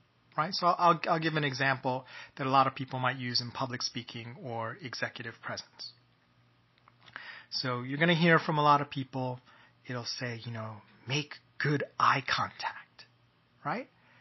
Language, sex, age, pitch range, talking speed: English, male, 30-49, 130-165 Hz, 165 wpm